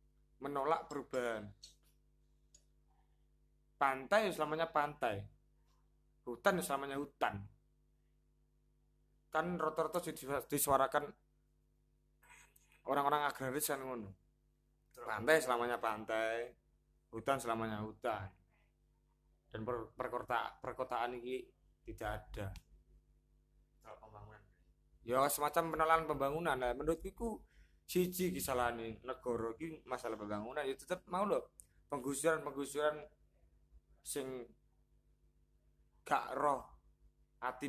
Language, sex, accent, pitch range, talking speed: Indonesian, male, native, 105-155 Hz, 80 wpm